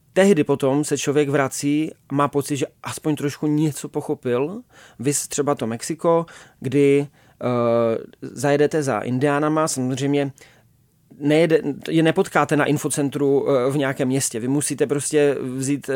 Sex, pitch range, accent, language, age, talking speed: male, 135-150 Hz, native, Czech, 30-49, 130 wpm